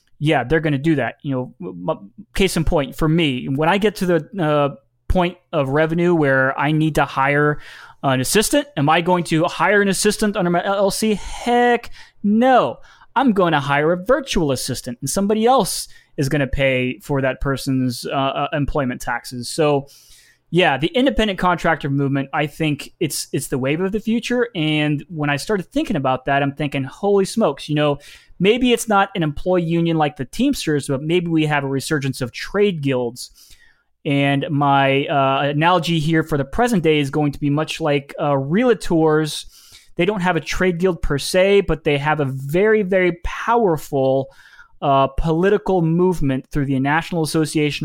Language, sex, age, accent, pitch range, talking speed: English, male, 20-39, American, 140-180 Hz, 185 wpm